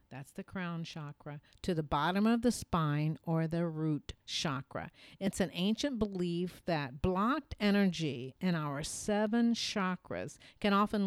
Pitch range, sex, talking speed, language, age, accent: 155-195 Hz, female, 145 wpm, English, 50-69, American